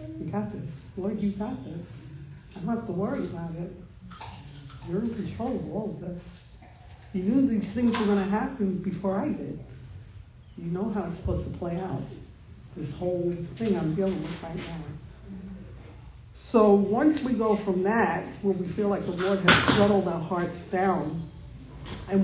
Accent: American